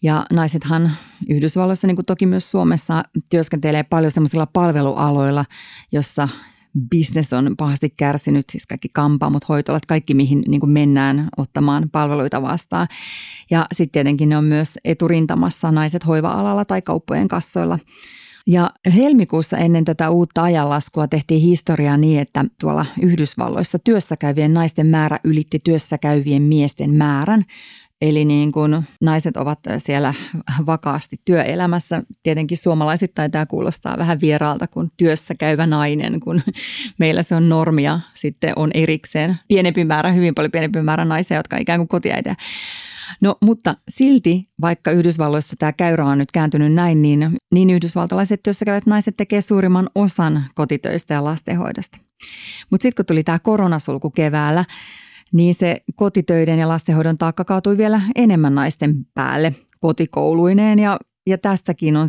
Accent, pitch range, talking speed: native, 150-180 Hz, 135 wpm